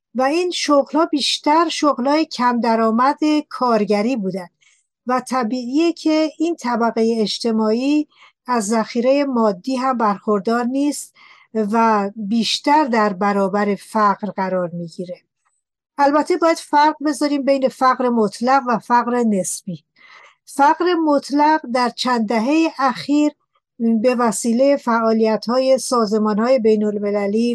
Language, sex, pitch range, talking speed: Persian, female, 215-270 Hz, 110 wpm